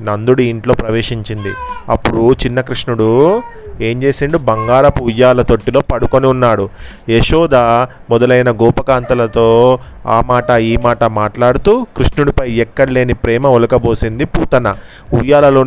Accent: native